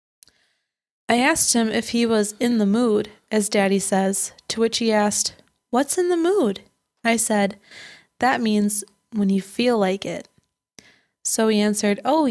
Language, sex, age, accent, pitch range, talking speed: English, female, 20-39, American, 205-245 Hz, 160 wpm